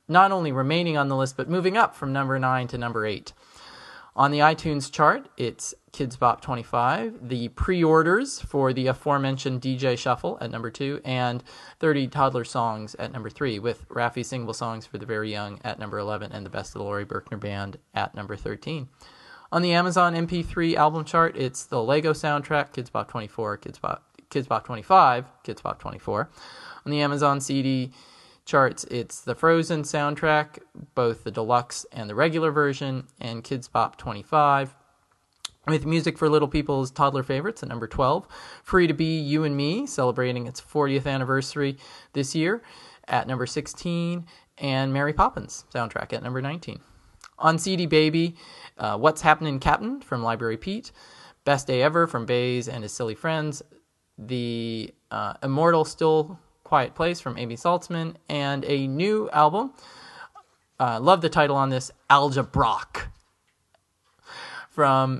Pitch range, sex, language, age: 125-155 Hz, male, English, 20-39